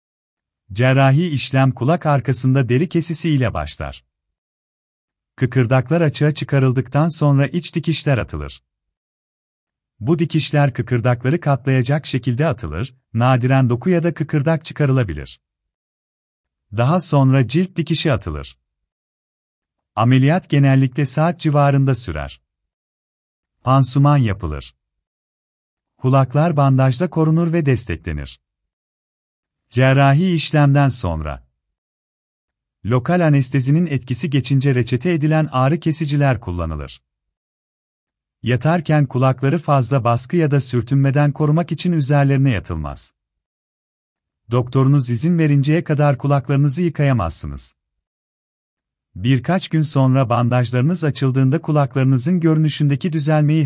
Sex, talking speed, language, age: male, 90 wpm, Turkish, 40-59